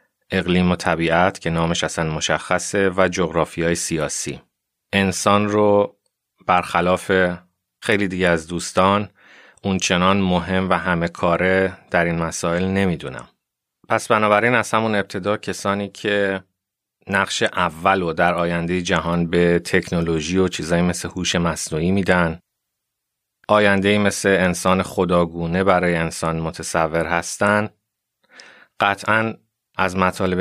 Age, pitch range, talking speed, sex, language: 30-49, 85-95 Hz, 115 wpm, male, Persian